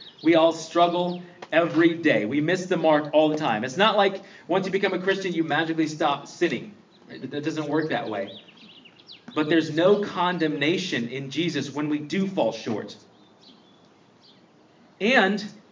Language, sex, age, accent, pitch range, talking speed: English, male, 30-49, American, 135-185 Hz, 155 wpm